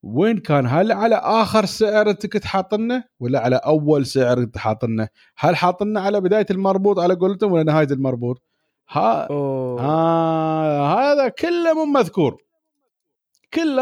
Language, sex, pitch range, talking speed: Arabic, male, 145-235 Hz, 125 wpm